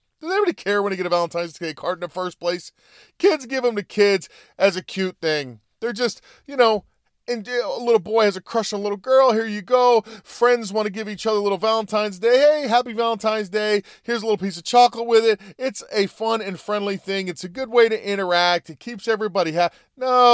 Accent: American